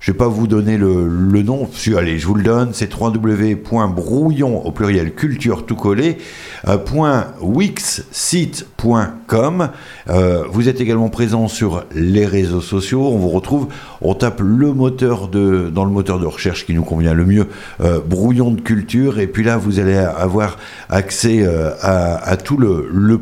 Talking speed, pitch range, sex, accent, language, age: 150 wpm, 95-120 Hz, male, French, French, 60-79